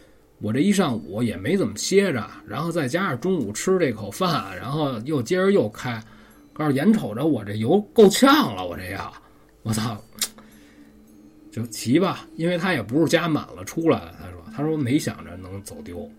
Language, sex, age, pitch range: Chinese, male, 20-39, 105-145 Hz